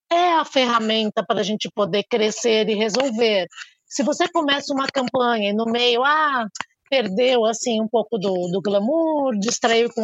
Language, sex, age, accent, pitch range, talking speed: Portuguese, female, 20-39, Brazilian, 215-280 Hz, 165 wpm